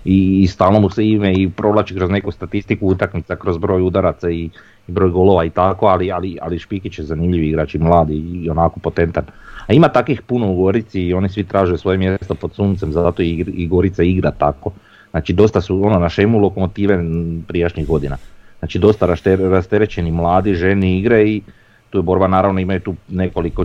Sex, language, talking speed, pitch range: male, Croatian, 190 wpm, 85-100 Hz